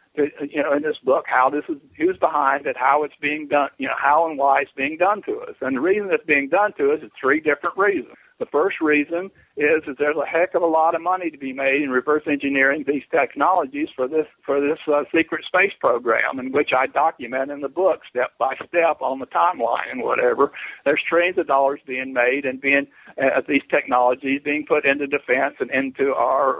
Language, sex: English, male